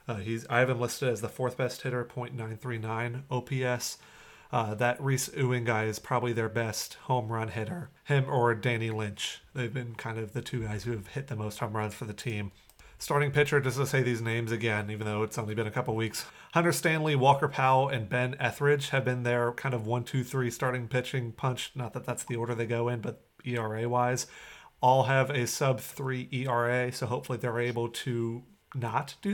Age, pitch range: 30-49, 115-135 Hz